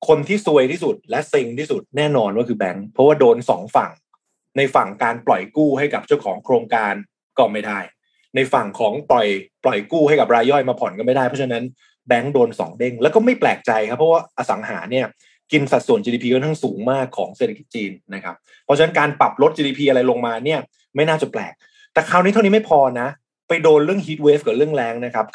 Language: Thai